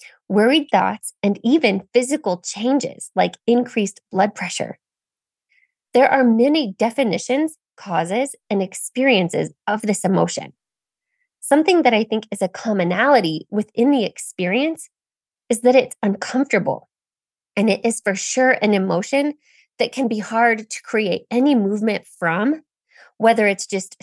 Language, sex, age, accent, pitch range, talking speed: English, female, 20-39, American, 195-250 Hz, 130 wpm